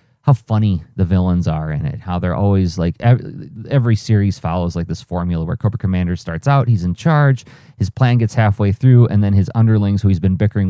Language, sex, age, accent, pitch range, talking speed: English, male, 30-49, American, 95-130 Hz, 220 wpm